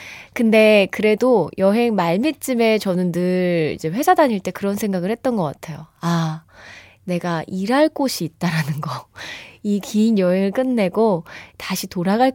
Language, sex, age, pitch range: Korean, female, 20-39, 180-260 Hz